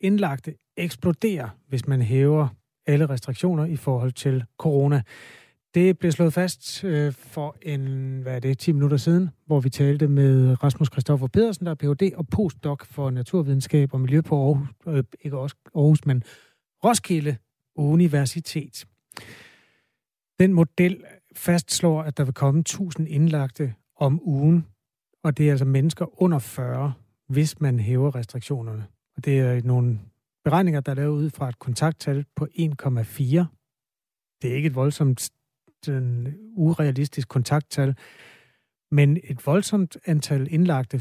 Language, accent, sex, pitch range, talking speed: Danish, native, male, 130-160 Hz, 135 wpm